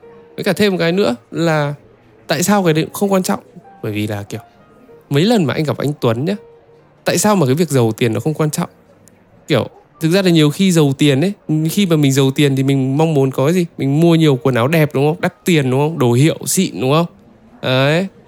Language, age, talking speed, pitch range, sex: Vietnamese, 10-29, 250 wpm, 125-170 Hz, male